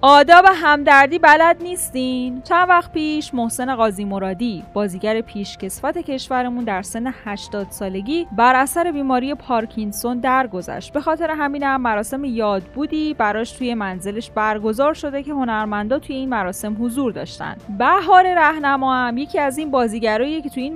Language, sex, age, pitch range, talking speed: Persian, female, 10-29, 220-295 Hz, 145 wpm